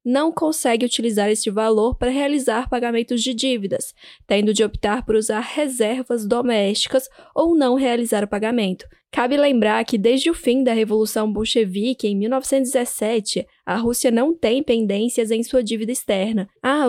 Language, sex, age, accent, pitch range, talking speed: Portuguese, female, 10-29, Brazilian, 220-265 Hz, 155 wpm